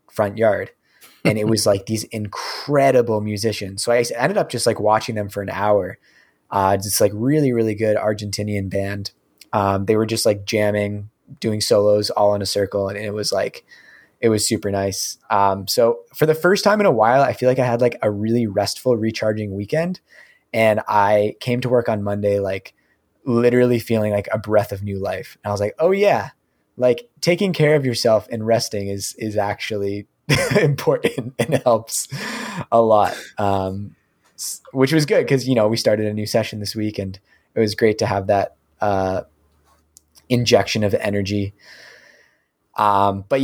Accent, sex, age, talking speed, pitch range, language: American, male, 20-39, 180 wpm, 100-120 Hz, English